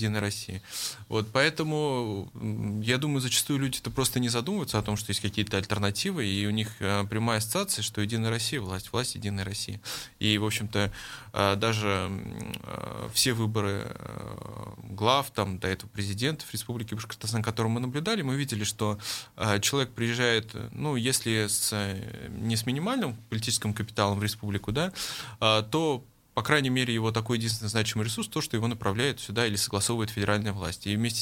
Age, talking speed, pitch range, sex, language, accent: 20-39, 170 wpm, 105-130 Hz, male, Russian, native